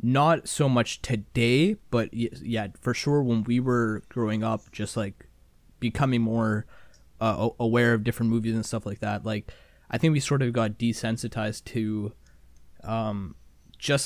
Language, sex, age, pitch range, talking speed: English, male, 20-39, 110-125 Hz, 160 wpm